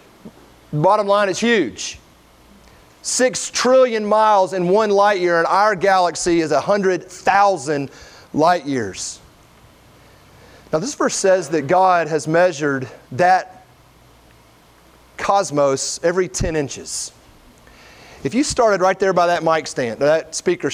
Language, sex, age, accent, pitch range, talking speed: English, male, 30-49, American, 155-200 Hz, 125 wpm